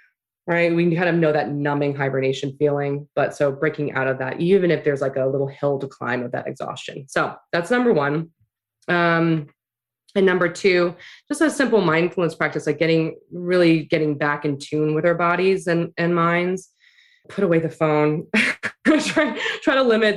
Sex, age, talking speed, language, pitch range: female, 20-39, 180 wpm, English, 150-195 Hz